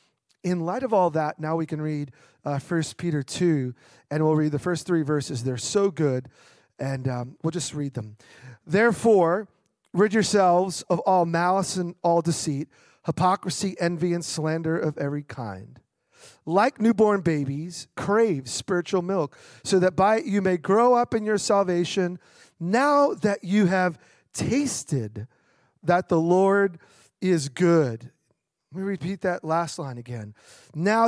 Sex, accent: male, American